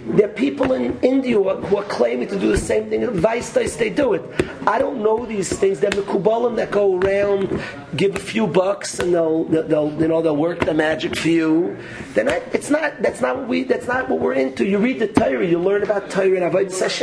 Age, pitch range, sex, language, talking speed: 40-59, 175-220 Hz, male, English, 230 wpm